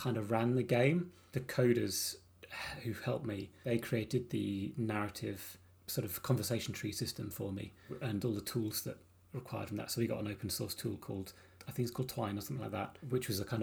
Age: 30-49